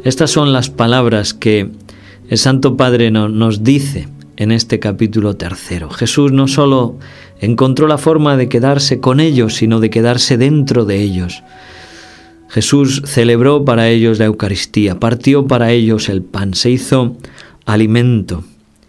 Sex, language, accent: male, Spanish, Spanish